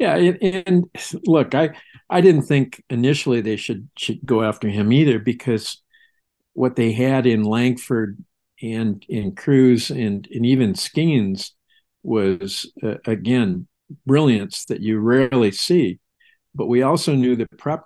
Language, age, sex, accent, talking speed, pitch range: English, 50-69, male, American, 145 wpm, 105-130 Hz